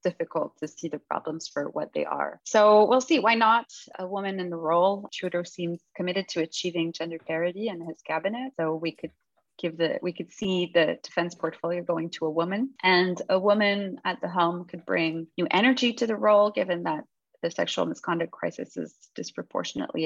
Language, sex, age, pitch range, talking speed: English, female, 30-49, 160-195 Hz, 195 wpm